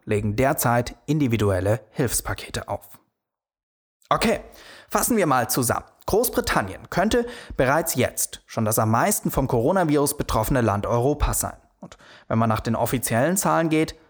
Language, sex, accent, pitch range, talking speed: German, male, German, 110-150 Hz, 135 wpm